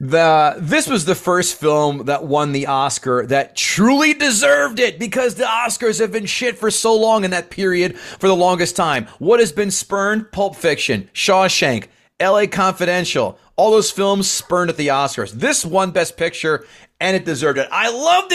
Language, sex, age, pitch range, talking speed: English, male, 30-49, 140-195 Hz, 185 wpm